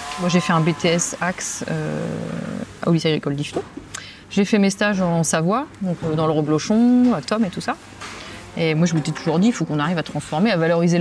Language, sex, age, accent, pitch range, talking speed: French, female, 30-49, French, 155-200 Hz, 225 wpm